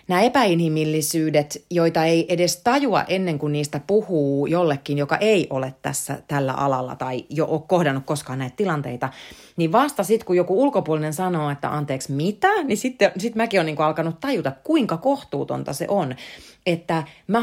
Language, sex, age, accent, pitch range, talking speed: Finnish, female, 30-49, native, 150-215 Hz, 165 wpm